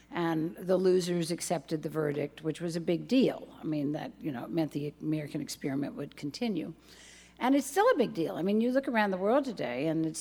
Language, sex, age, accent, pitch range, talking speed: English, female, 60-79, American, 145-185 Hz, 225 wpm